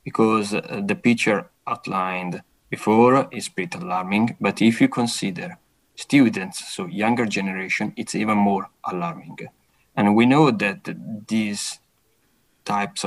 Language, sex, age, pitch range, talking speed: English, male, 20-39, 100-120 Hz, 120 wpm